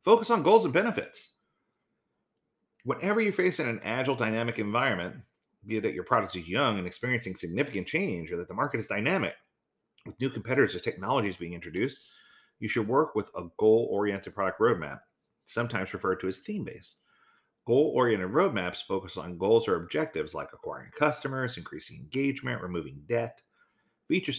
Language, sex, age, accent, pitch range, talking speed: English, male, 40-59, American, 95-140 Hz, 160 wpm